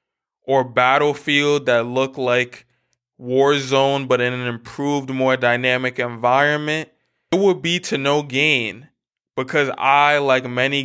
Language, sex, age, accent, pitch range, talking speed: English, male, 20-39, American, 120-145 Hz, 125 wpm